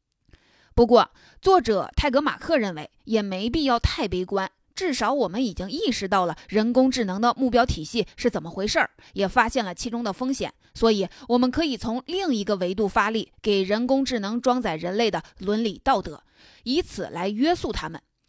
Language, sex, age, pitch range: Chinese, female, 20-39, 200-255 Hz